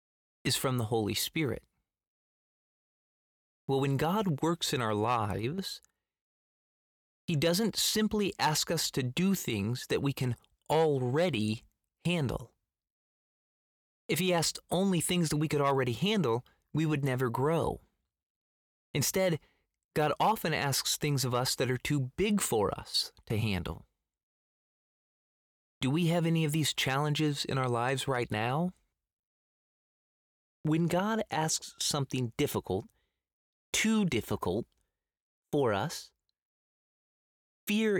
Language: English